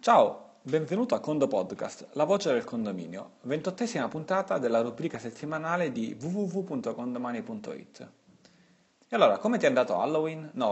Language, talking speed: Italian, 135 wpm